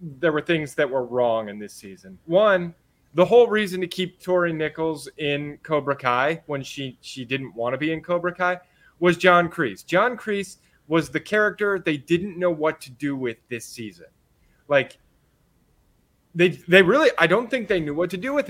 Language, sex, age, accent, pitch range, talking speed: English, male, 30-49, American, 145-180 Hz, 195 wpm